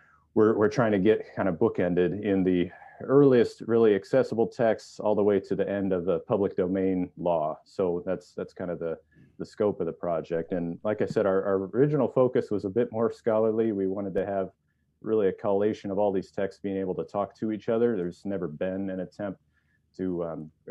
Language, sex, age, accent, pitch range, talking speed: English, male, 30-49, American, 90-105 Hz, 215 wpm